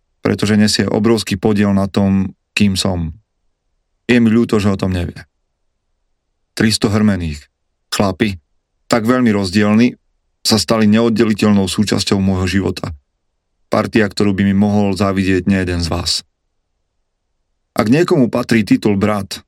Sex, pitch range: male, 90-110 Hz